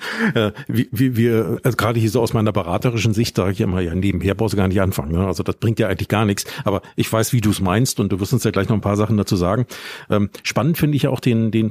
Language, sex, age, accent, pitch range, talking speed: German, male, 50-69, German, 105-130 Hz, 290 wpm